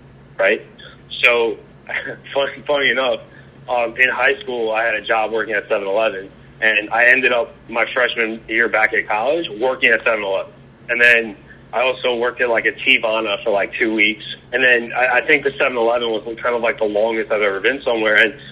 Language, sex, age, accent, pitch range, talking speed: English, male, 30-49, American, 110-130 Hz, 195 wpm